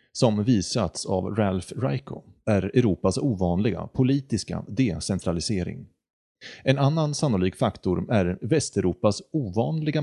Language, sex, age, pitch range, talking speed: Swedish, male, 30-49, 95-135 Hz, 100 wpm